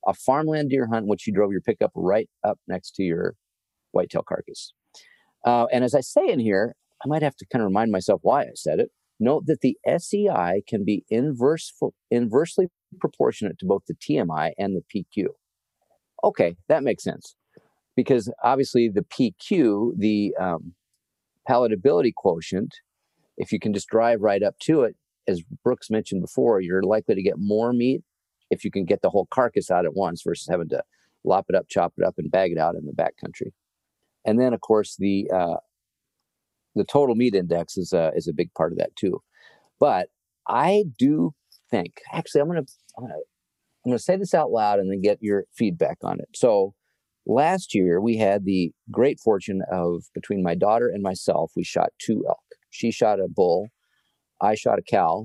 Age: 50-69